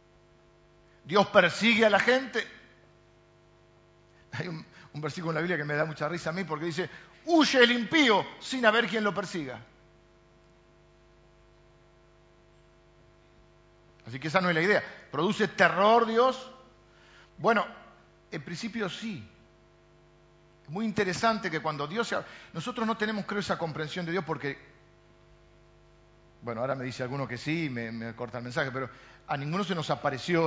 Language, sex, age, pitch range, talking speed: Spanish, male, 50-69, 135-200 Hz, 150 wpm